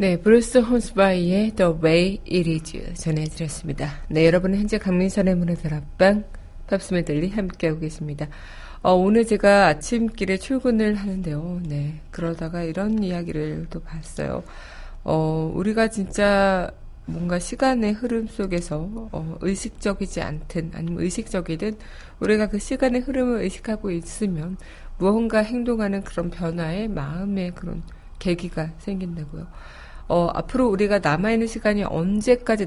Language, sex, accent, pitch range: Korean, female, native, 165-215 Hz